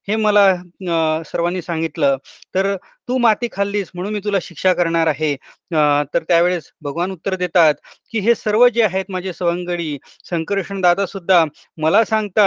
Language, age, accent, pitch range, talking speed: Marathi, 30-49, native, 160-195 Hz, 130 wpm